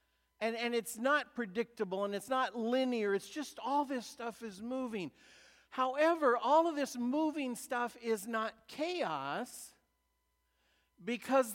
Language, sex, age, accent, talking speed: English, male, 50-69, American, 135 wpm